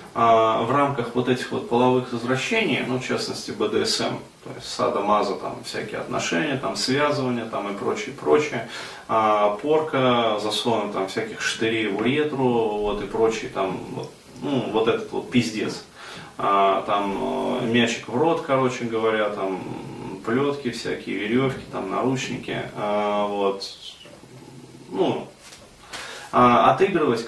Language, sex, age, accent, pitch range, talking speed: Russian, male, 20-39, native, 110-125 Hz, 125 wpm